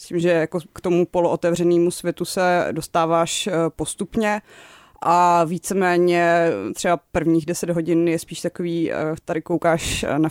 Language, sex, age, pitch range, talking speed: Czech, female, 20-39, 160-185 Hz, 135 wpm